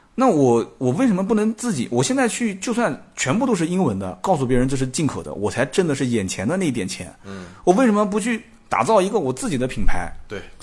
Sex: male